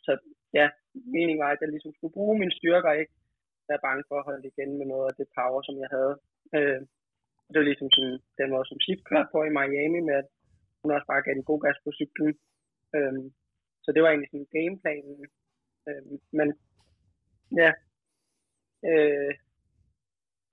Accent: native